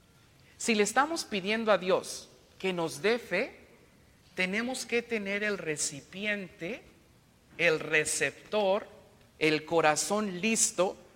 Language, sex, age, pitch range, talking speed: English, male, 50-69, 155-210 Hz, 110 wpm